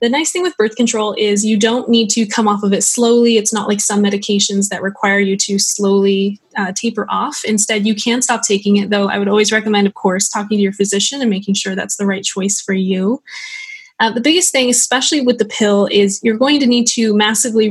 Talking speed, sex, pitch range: 235 wpm, female, 200-230 Hz